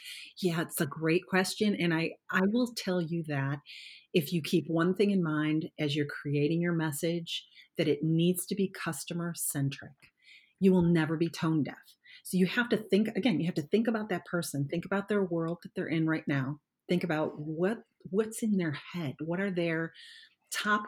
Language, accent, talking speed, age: English, American, 200 wpm, 40-59